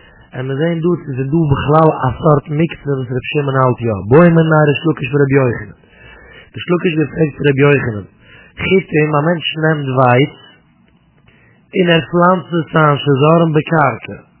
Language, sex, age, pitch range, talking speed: English, male, 30-49, 135-155 Hz, 135 wpm